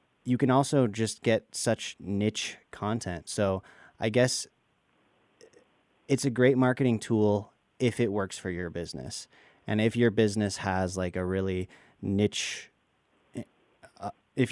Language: English